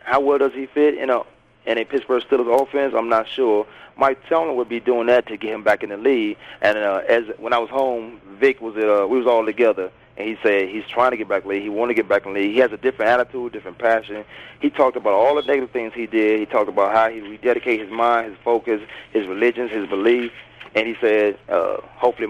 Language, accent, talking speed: English, American, 255 wpm